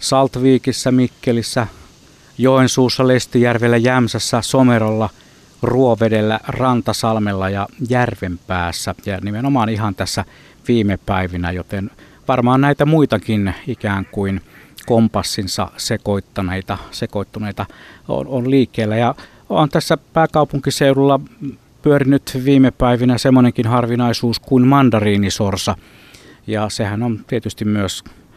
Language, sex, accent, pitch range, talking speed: Finnish, male, native, 100-135 Hz, 90 wpm